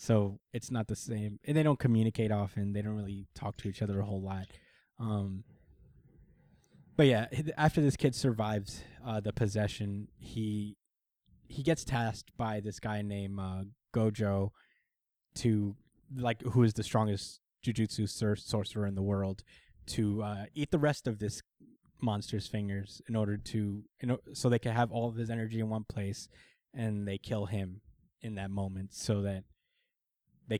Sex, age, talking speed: male, 20-39, 175 wpm